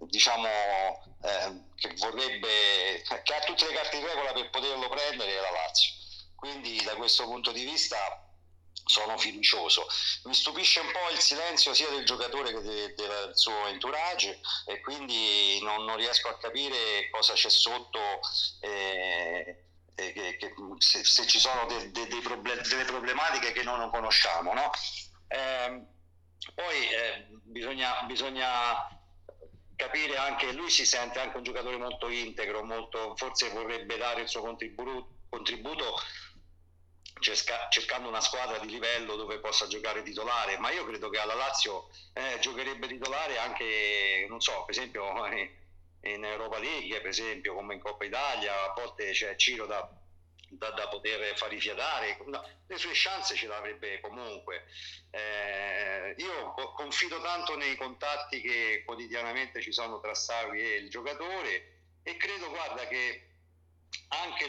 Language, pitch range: Italian, 90-130 Hz